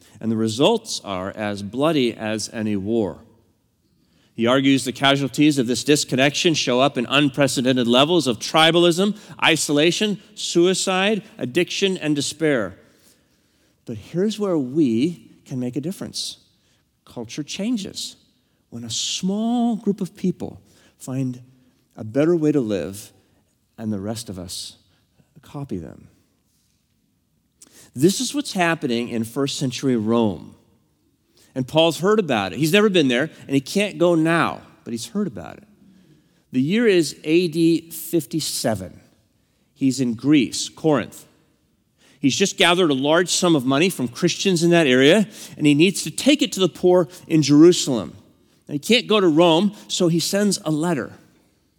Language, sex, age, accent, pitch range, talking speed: English, male, 40-59, American, 120-180 Hz, 150 wpm